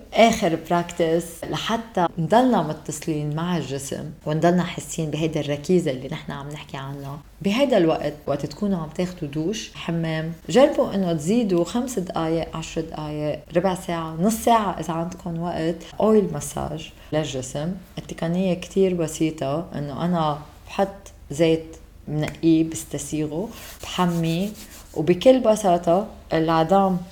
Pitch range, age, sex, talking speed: 160-195 Hz, 30-49, female, 120 wpm